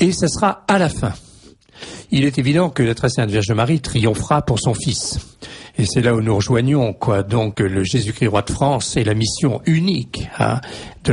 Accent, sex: French, male